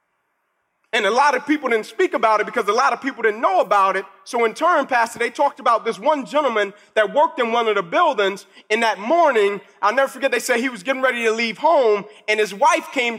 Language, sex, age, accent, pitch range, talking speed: English, male, 30-49, American, 230-305 Hz, 245 wpm